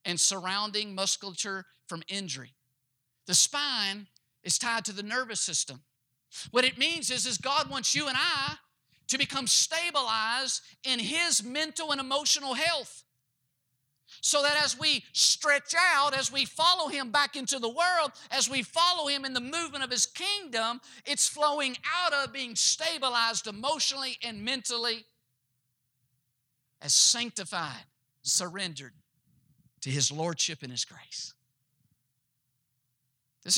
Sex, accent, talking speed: male, American, 135 wpm